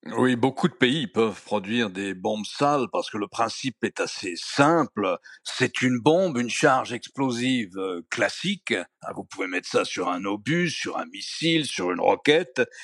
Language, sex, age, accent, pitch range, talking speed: French, male, 60-79, French, 120-165 Hz, 170 wpm